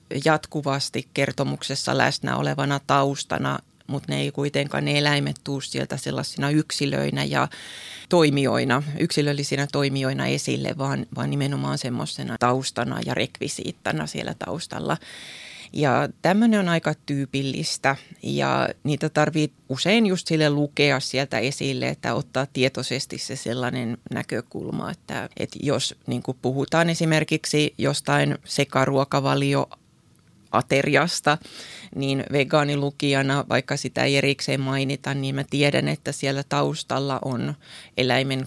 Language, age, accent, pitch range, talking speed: Finnish, 20-39, native, 130-145 Hz, 115 wpm